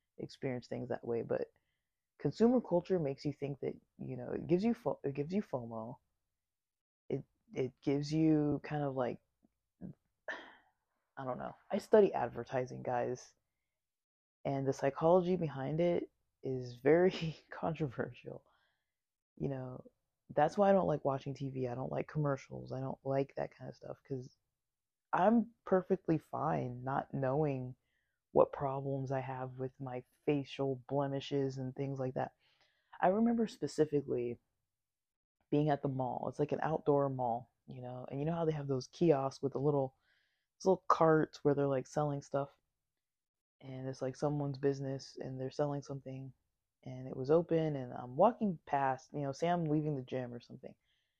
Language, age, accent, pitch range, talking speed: English, 20-39, American, 130-155 Hz, 160 wpm